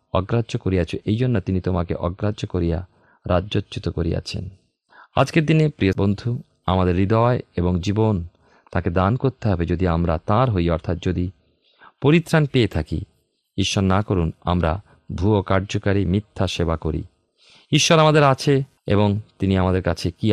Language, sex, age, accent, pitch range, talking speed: Bengali, male, 40-59, native, 90-110 Hz, 140 wpm